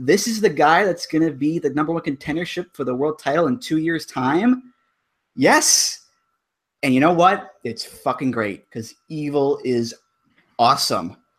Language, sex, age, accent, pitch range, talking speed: English, male, 20-39, American, 120-155 Hz, 170 wpm